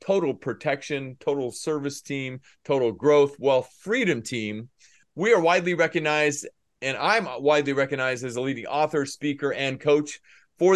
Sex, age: male, 30-49